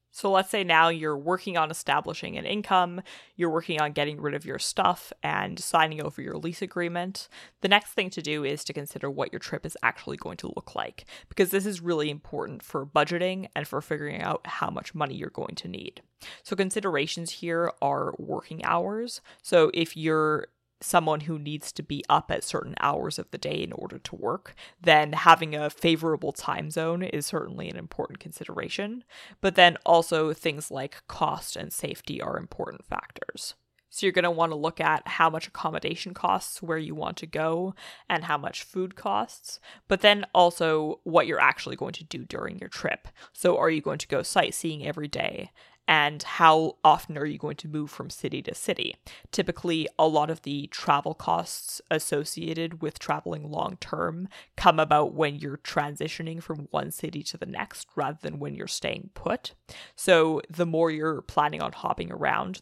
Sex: female